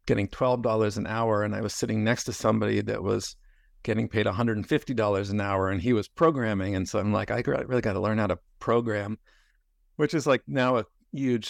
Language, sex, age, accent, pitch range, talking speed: English, male, 50-69, American, 105-120 Hz, 210 wpm